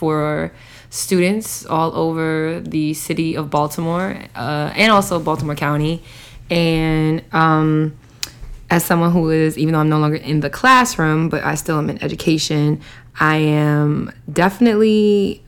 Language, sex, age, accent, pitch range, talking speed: English, female, 20-39, American, 150-170 Hz, 140 wpm